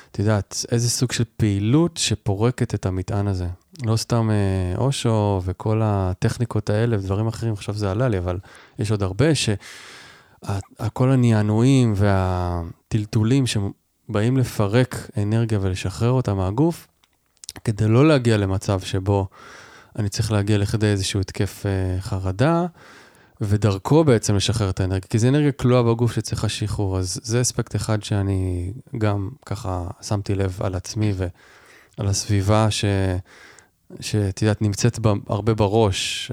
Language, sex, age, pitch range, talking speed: Hebrew, male, 20-39, 95-115 Hz, 125 wpm